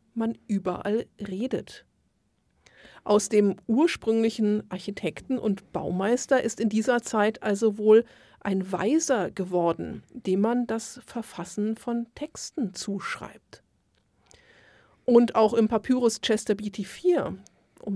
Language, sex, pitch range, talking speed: German, female, 190-235 Hz, 110 wpm